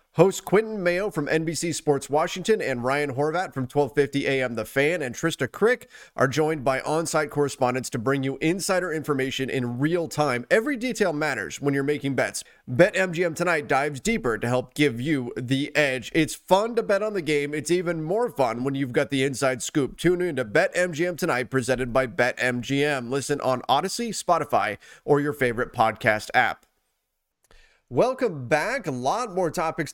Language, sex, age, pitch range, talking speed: English, male, 30-49, 130-170 Hz, 175 wpm